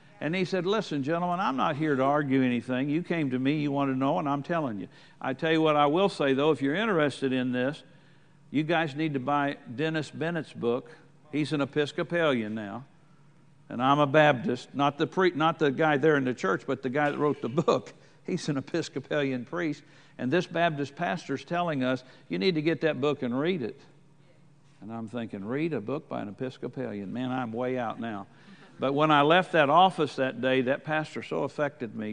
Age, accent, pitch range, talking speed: 60-79, American, 130-160 Hz, 215 wpm